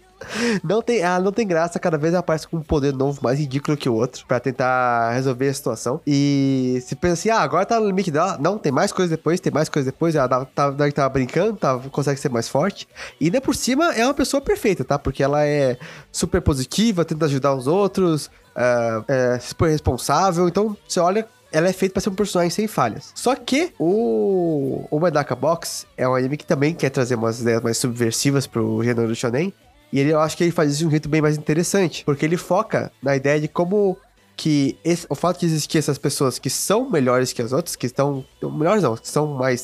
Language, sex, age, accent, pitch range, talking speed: Portuguese, male, 20-39, Brazilian, 130-175 Hz, 225 wpm